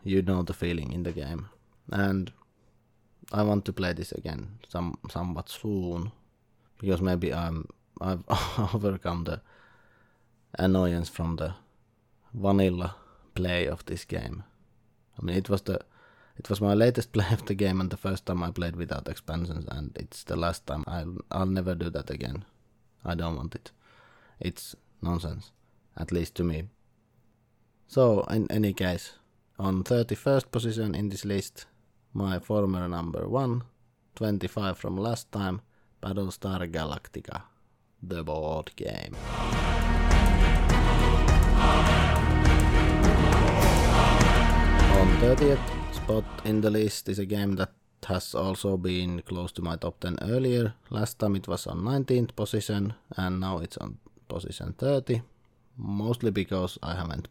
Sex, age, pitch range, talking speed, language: male, 30-49, 85-110 Hz, 140 wpm, English